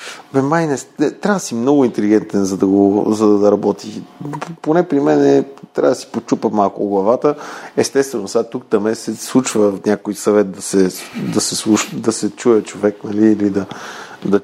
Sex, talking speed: male, 200 wpm